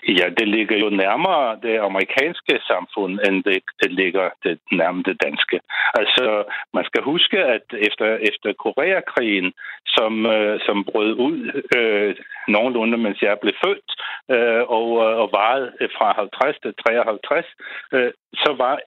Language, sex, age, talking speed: Danish, male, 60-79, 140 wpm